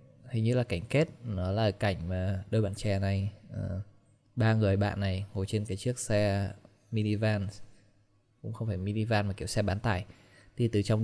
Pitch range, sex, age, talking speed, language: 100-120 Hz, male, 20-39, 190 wpm, Vietnamese